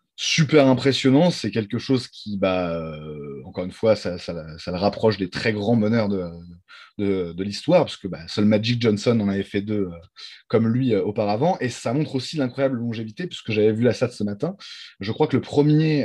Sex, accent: male, French